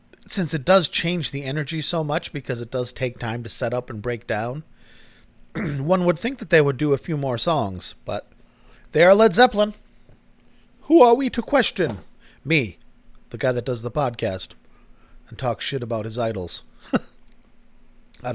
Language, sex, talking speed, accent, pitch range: English, male, 175 wpm, American, 120-170 Hz